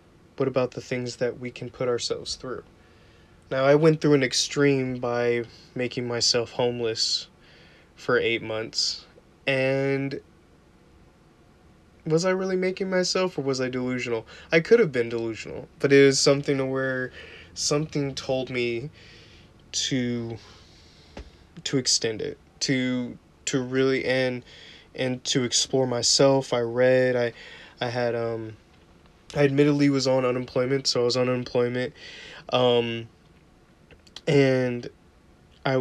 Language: English